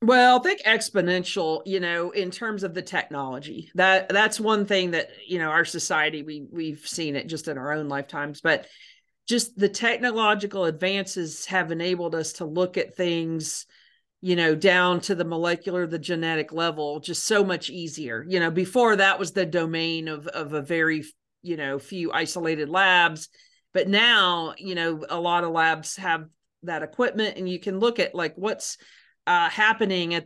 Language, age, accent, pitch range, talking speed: English, 40-59, American, 155-190 Hz, 180 wpm